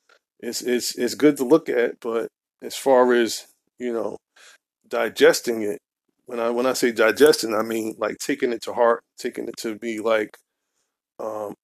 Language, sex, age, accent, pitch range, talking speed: English, male, 20-39, American, 110-135 Hz, 175 wpm